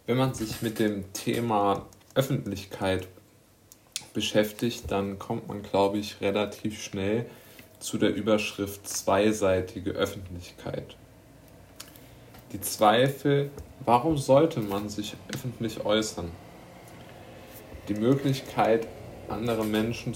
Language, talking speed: German, 95 wpm